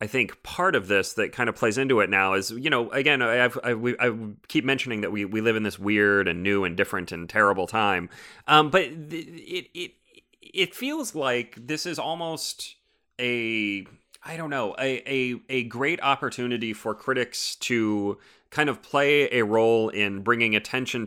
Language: English